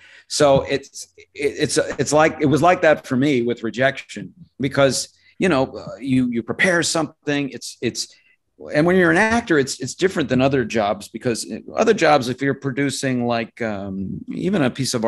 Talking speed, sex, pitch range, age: 180 wpm, male, 115-145 Hz, 40-59